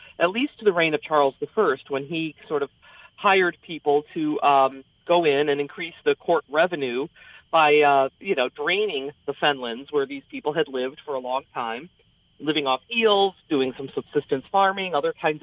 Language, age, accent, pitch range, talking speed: English, 40-59, American, 135-180 Hz, 185 wpm